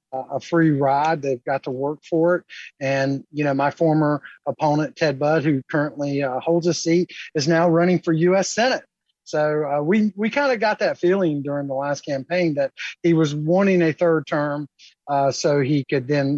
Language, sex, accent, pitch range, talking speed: English, male, American, 140-170 Hz, 200 wpm